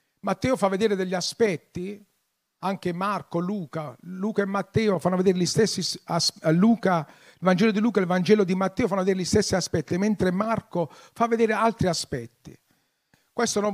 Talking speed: 165 wpm